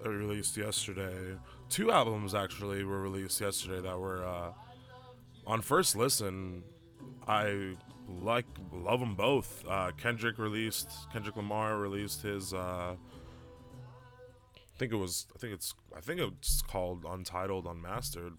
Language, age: English, 20-39